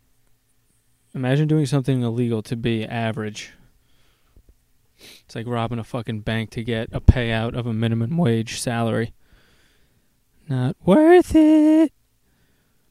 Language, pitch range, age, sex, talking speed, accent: English, 115-145 Hz, 20-39, male, 115 wpm, American